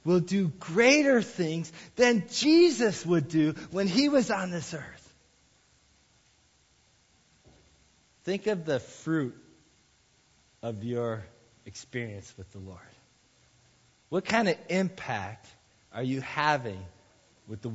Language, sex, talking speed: English, male, 110 wpm